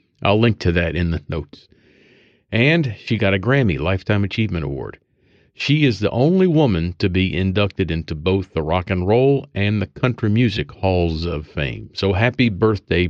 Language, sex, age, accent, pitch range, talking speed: English, male, 50-69, American, 90-120 Hz, 180 wpm